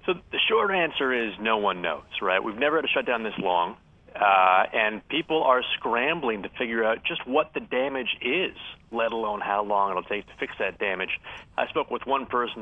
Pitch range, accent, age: 110-150 Hz, American, 30-49